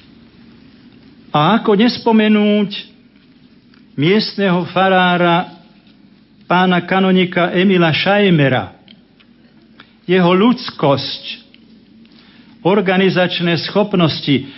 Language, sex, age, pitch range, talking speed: Slovak, male, 50-69, 155-210 Hz, 55 wpm